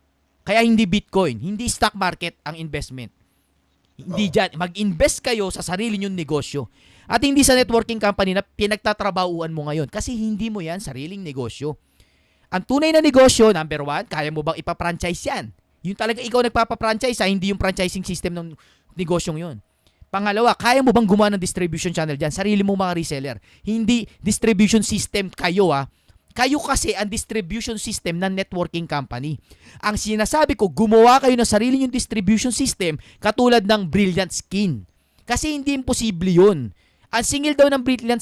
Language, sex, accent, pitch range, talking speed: Filipino, male, native, 155-225 Hz, 160 wpm